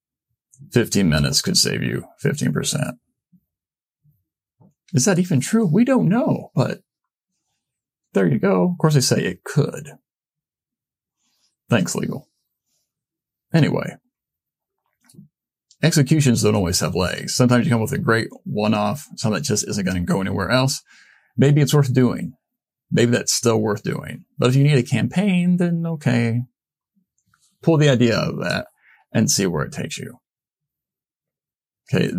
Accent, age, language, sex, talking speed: American, 40-59, English, male, 145 wpm